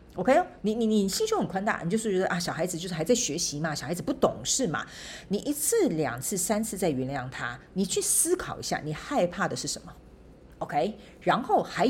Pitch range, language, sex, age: 165-225 Hz, Chinese, female, 40-59